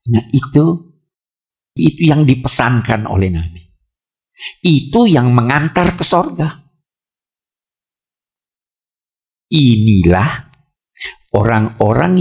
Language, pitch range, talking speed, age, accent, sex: Indonesian, 90-135 Hz, 70 wpm, 50-69, native, male